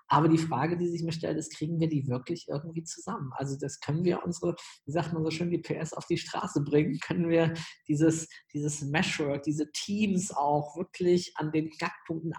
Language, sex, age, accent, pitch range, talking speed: German, male, 20-39, German, 145-165 Hz, 205 wpm